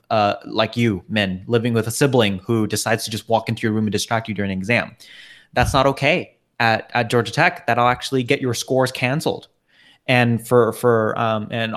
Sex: male